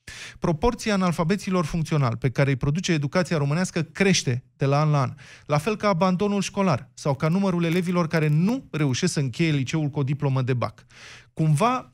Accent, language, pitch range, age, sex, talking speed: native, Romanian, 130-180 Hz, 20-39, male, 180 wpm